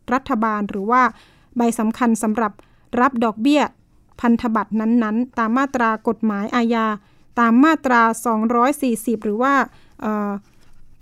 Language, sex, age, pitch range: Thai, female, 20-39, 225-265 Hz